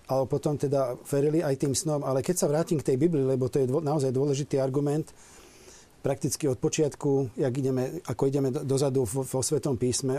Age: 40-59